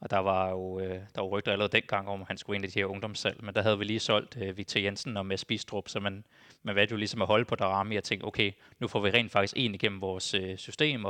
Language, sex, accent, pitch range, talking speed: Danish, male, native, 100-115 Hz, 270 wpm